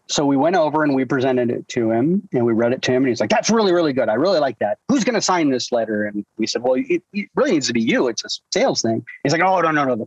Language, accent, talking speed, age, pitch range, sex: English, American, 320 wpm, 30-49, 130-205 Hz, male